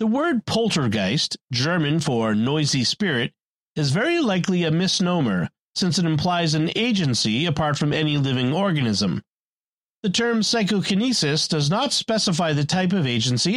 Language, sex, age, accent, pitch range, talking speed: English, male, 40-59, American, 150-205 Hz, 140 wpm